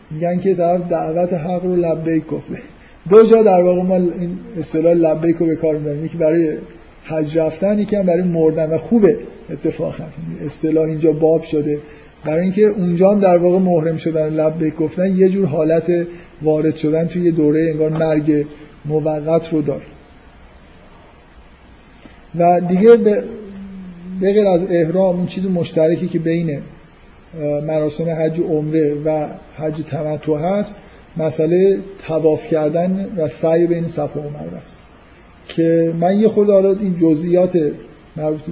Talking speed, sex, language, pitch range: 140 wpm, male, Persian, 155-180 Hz